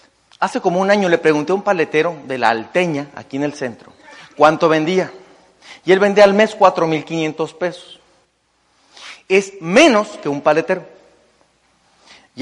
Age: 40-59